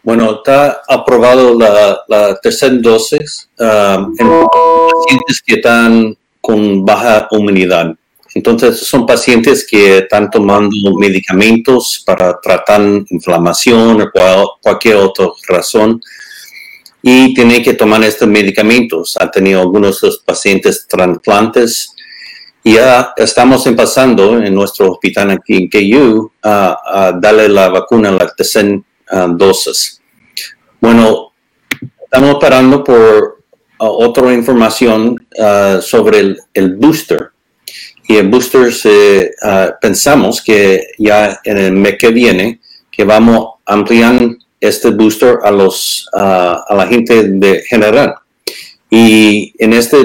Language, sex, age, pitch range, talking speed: Spanish, male, 50-69, 100-125 Hz, 115 wpm